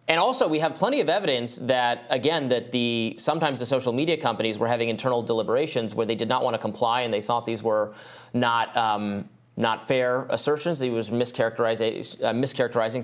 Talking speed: 200 wpm